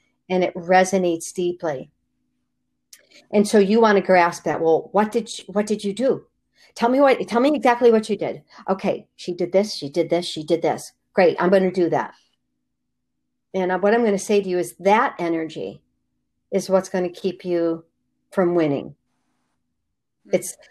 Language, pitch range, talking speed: English, 165-195 Hz, 185 wpm